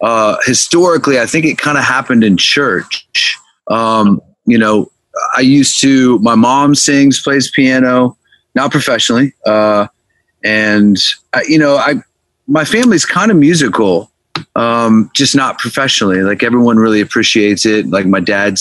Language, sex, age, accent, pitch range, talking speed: English, male, 30-49, American, 105-135 Hz, 150 wpm